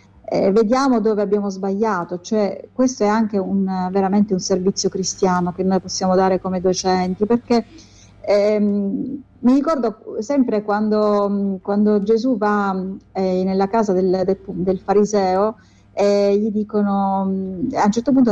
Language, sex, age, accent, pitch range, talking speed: Italian, female, 30-49, native, 190-215 Hz, 145 wpm